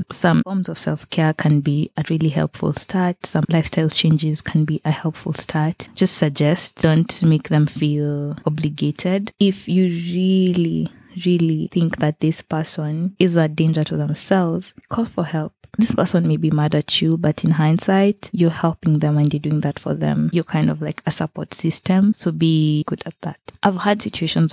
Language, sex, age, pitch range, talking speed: English, female, 20-39, 155-175 Hz, 185 wpm